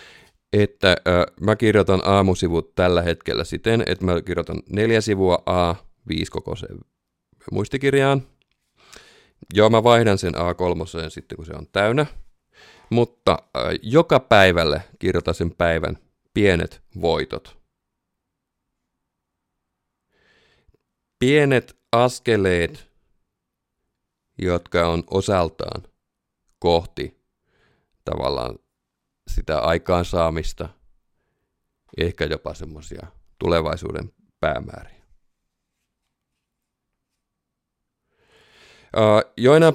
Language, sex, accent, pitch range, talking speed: Finnish, male, native, 85-115 Hz, 75 wpm